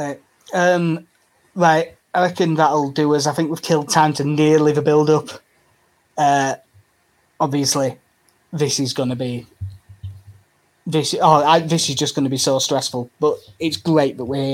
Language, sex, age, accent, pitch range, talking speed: English, male, 20-39, British, 145-195 Hz, 170 wpm